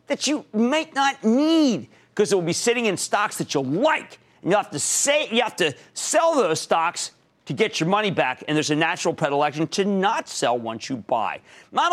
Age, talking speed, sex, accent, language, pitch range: 40-59, 215 wpm, male, American, English, 150-235 Hz